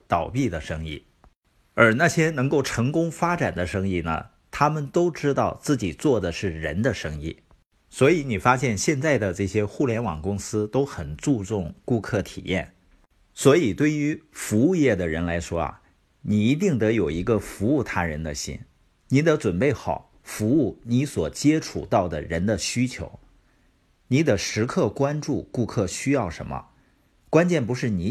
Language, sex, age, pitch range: Chinese, male, 50-69, 90-140 Hz